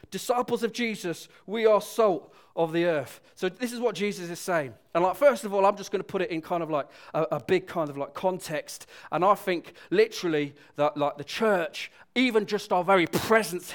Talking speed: 225 wpm